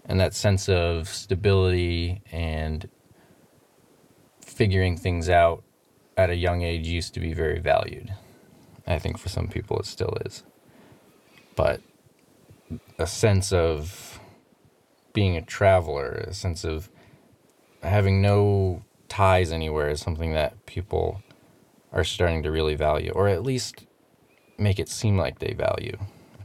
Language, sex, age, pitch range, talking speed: English, male, 20-39, 80-100 Hz, 130 wpm